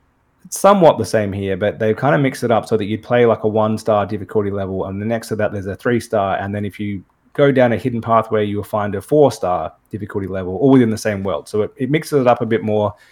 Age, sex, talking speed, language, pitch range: 20-39, male, 280 wpm, English, 100-120 Hz